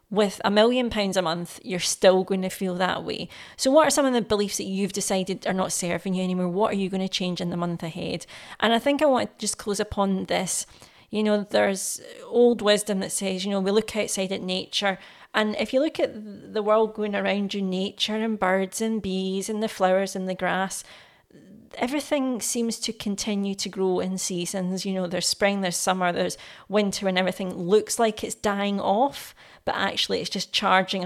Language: English